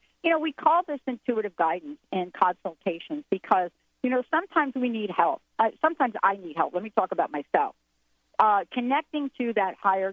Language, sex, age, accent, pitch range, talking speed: English, female, 50-69, American, 190-255 Hz, 185 wpm